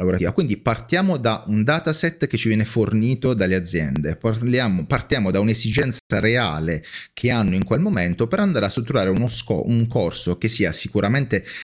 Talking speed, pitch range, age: 170 wpm, 100-140 Hz, 30-49